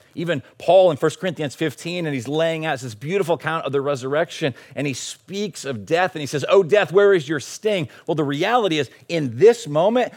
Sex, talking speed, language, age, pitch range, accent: male, 220 wpm, English, 40-59, 130-165 Hz, American